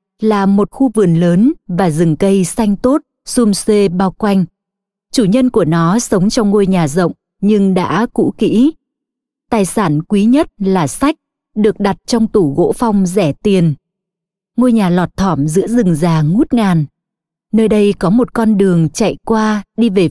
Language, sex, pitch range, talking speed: Vietnamese, female, 185-220 Hz, 180 wpm